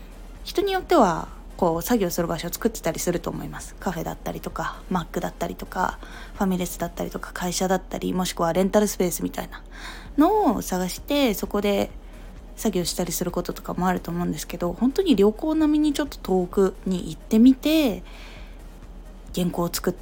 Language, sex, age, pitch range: Japanese, female, 20-39, 170-235 Hz